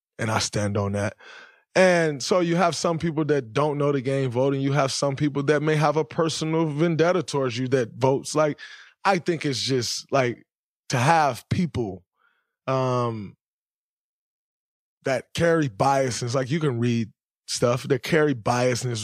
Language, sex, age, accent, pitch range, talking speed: English, male, 20-39, American, 110-145 Hz, 165 wpm